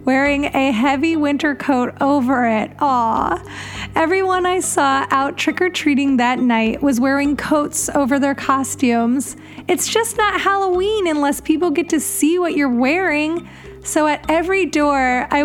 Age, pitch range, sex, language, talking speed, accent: 30-49, 245-305 Hz, female, English, 150 wpm, American